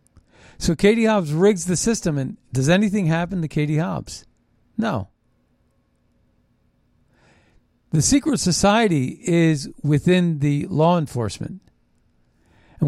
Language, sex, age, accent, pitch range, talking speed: English, male, 50-69, American, 145-180 Hz, 105 wpm